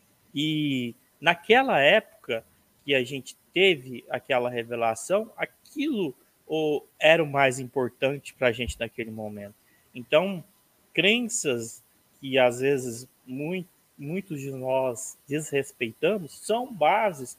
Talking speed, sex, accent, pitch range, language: 105 wpm, male, Brazilian, 125-170 Hz, Portuguese